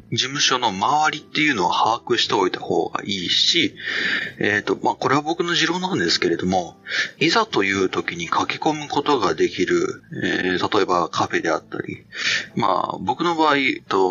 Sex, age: male, 40-59